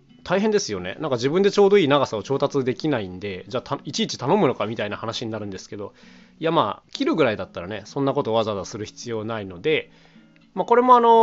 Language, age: Japanese, 20-39